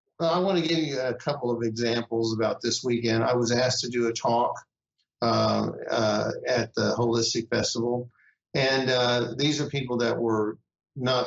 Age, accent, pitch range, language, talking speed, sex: 50-69, American, 115-135 Hz, English, 175 wpm, male